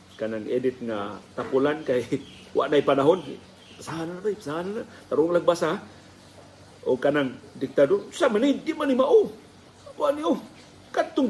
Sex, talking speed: male, 155 wpm